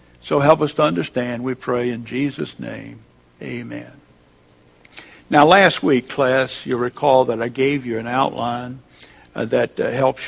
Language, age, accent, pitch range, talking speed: English, 60-79, American, 120-140 Hz, 160 wpm